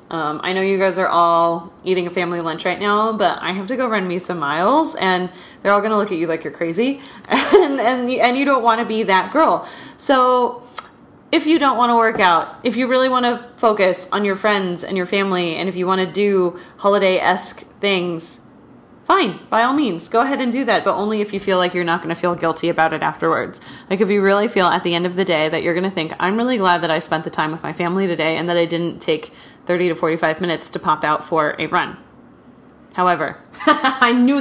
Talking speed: 245 wpm